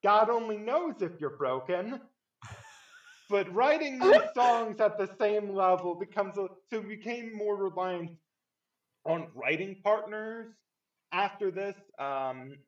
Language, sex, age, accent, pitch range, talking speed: English, male, 20-39, American, 125-180 Hz, 125 wpm